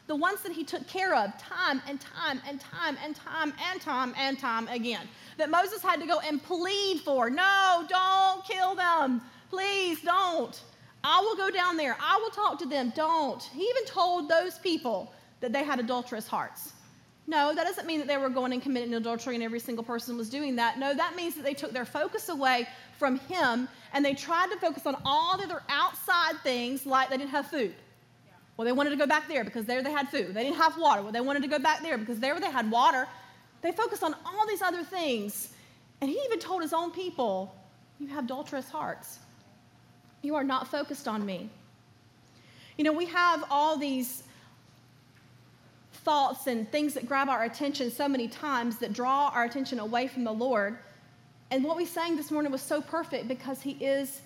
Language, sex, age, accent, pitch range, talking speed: English, female, 30-49, American, 255-335 Hz, 205 wpm